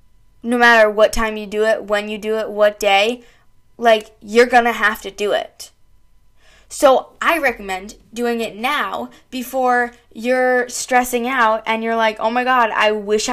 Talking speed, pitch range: 175 wpm, 215-255 Hz